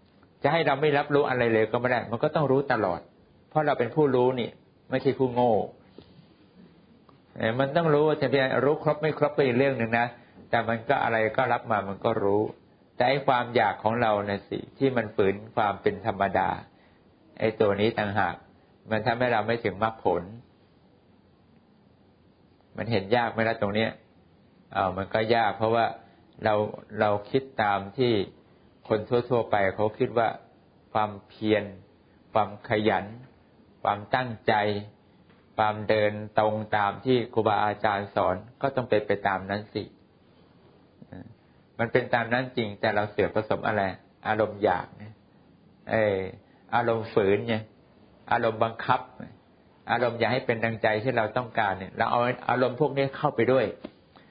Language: English